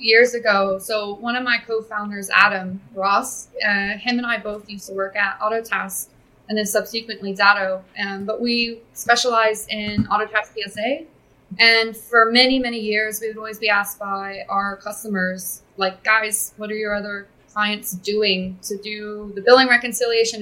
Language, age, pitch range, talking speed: English, 20-39, 205-235 Hz, 165 wpm